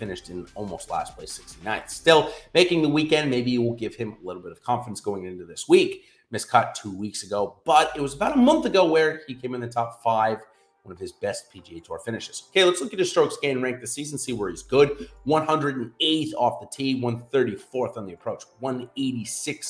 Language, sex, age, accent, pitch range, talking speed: English, male, 30-49, American, 120-190 Hz, 220 wpm